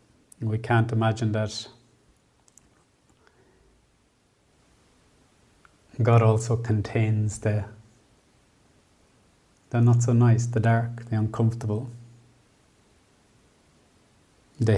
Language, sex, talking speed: English, male, 70 wpm